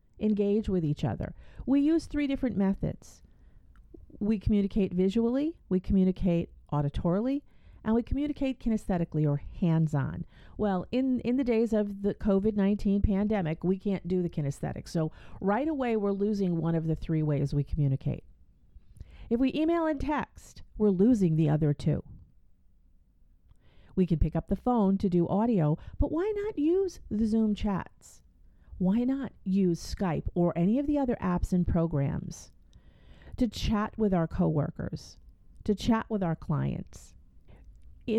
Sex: female